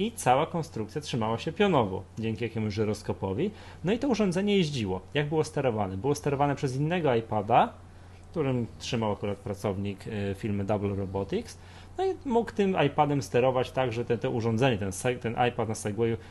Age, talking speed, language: 30-49, 175 wpm, Polish